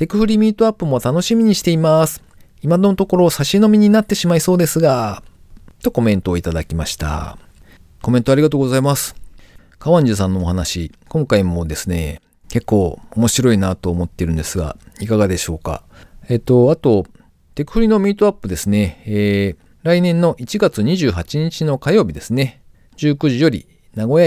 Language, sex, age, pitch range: Japanese, male, 40-59, 90-145 Hz